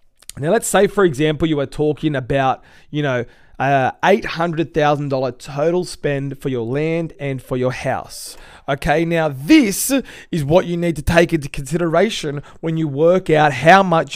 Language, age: English, 20-39